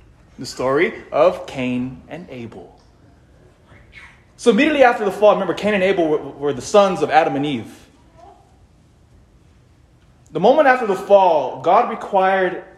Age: 30-49